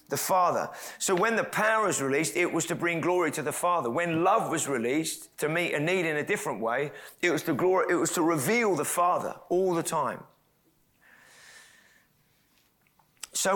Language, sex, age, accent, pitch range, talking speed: English, male, 30-49, British, 160-200 Hz, 185 wpm